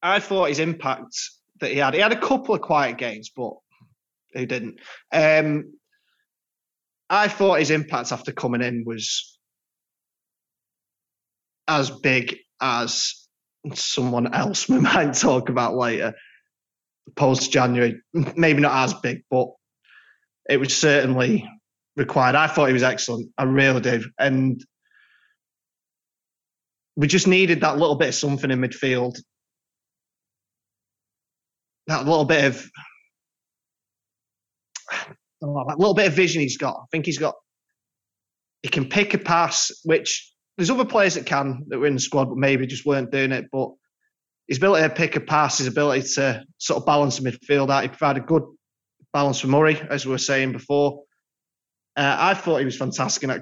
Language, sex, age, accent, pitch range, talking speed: English, male, 20-39, British, 125-155 Hz, 155 wpm